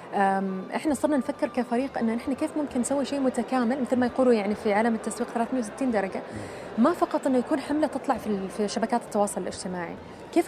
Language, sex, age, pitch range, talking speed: Arabic, female, 20-39, 210-270 Hz, 175 wpm